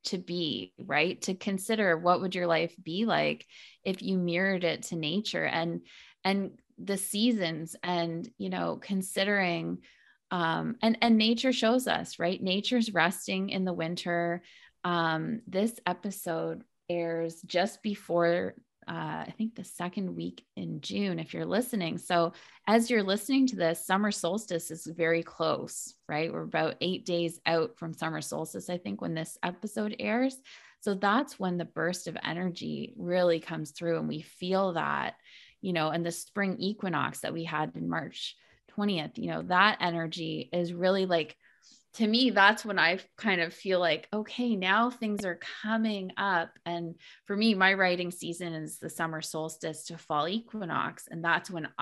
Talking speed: 165 wpm